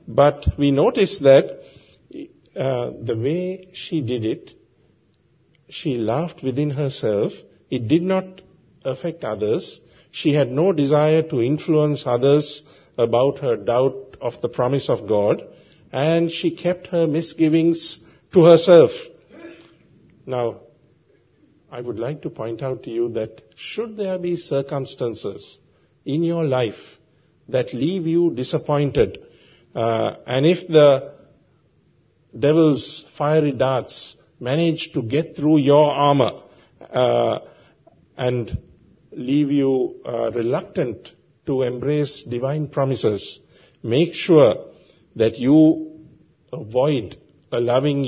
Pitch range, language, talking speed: 130-160 Hz, English, 115 wpm